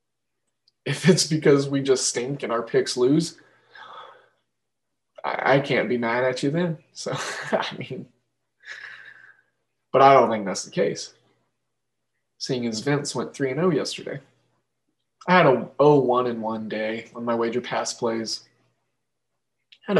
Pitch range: 120-160 Hz